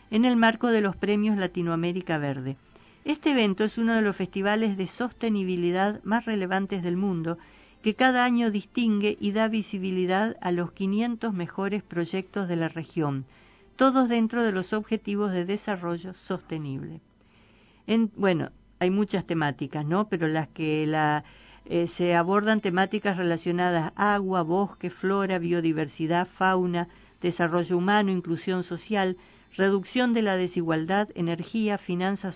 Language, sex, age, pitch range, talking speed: Spanish, female, 50-69, 175-210 Hz, 135 wpm